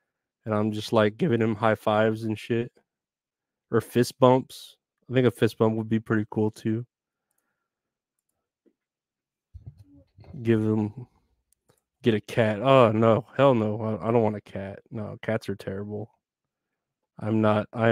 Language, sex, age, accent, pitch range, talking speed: English, male, 20-39, American, 110-120 Hz, 150 wpm